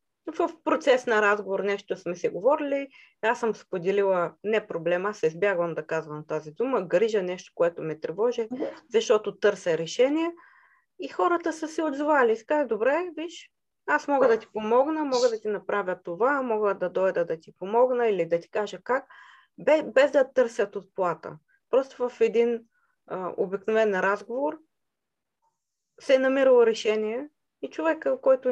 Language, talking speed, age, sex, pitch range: Bulgarian, 155 wpm, 20-39, female, 195-285 Hz